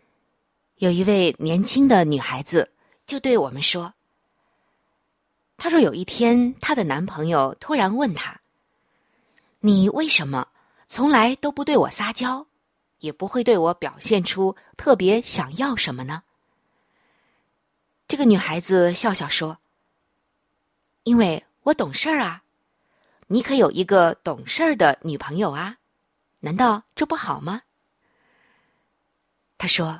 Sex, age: female, 20-39